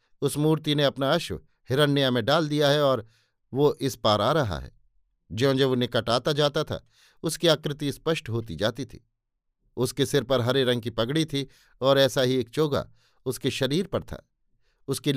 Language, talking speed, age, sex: Hindi, 185 wpm, 50-69, male